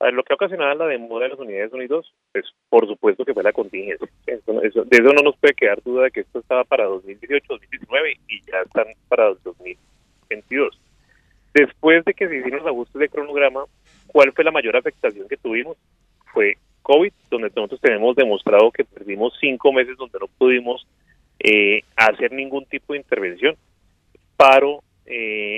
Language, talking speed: Spanish, 180 wpm